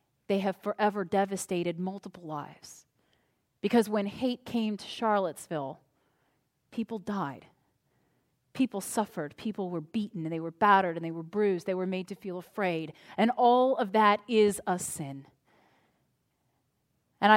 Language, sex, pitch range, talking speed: English, female, 185-240 Hz, 140 wpm